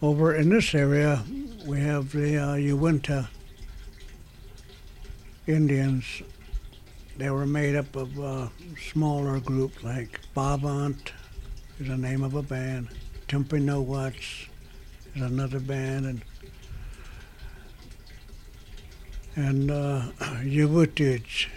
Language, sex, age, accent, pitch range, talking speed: English, male, 60-79, American, 110-145 Hz, 95 wpm